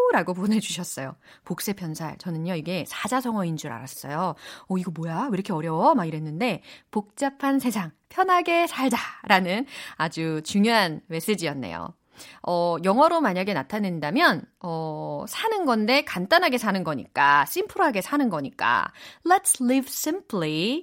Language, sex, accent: Korean, female, native